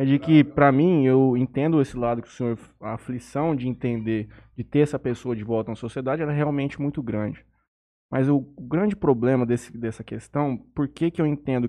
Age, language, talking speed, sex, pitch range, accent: 20-39, Portuguese, 210 wpm, male, 115-145 Hz, Brazilian